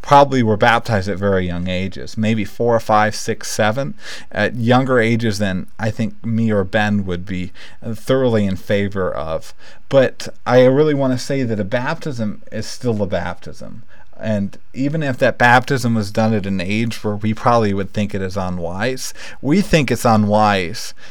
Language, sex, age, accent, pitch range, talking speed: English, male, 40-59, American, 100-125 Hz, 180 wpm